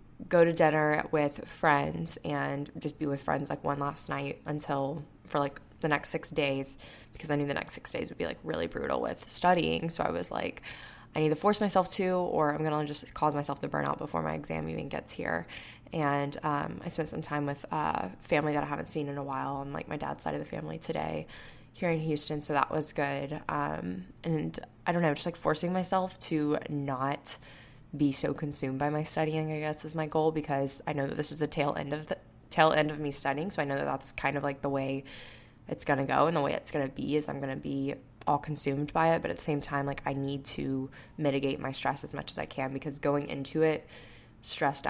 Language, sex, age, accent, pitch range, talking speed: English, female, 10-29, American, 135-155 Hz, 240 wpm